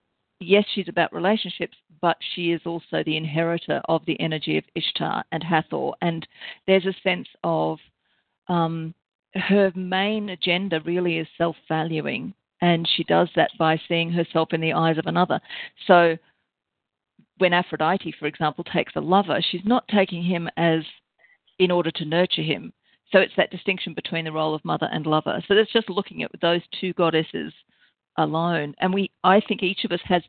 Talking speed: 170 wpm